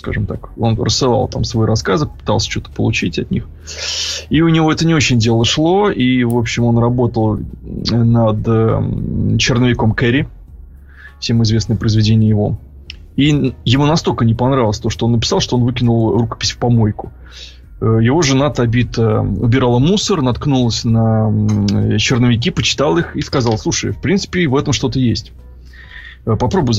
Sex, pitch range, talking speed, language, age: male, 110-125 Hz, 150 wpm, Russian, 20-39